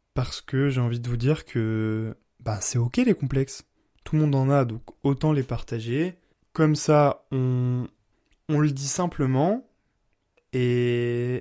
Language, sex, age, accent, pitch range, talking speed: French, male, 20-39, French, 120-140 Hz, 160 wpm